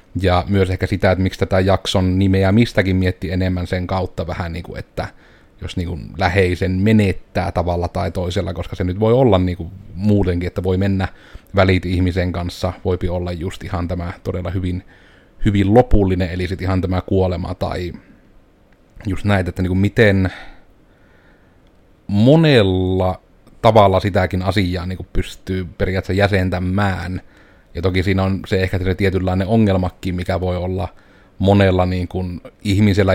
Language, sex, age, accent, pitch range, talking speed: Finnish, male, 30-49, native, 90-100 Hz, 150 wpm